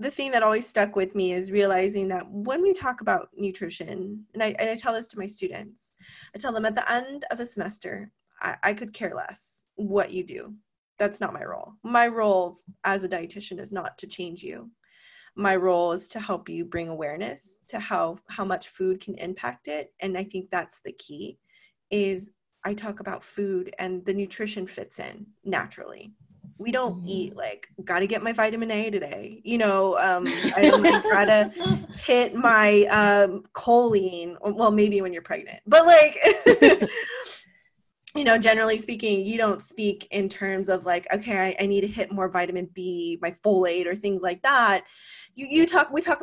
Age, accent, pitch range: 20-39, American, 185-225 Hz